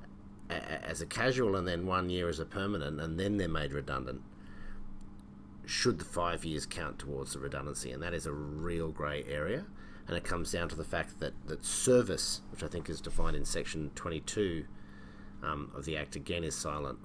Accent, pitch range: Australian, 75-95 Hz